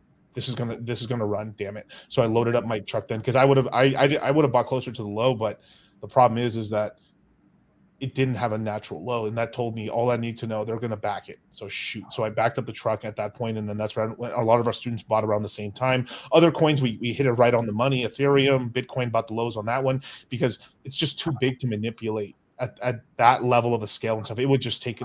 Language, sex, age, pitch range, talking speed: English, male, 30-49, 110-130 Hz, 285 wpm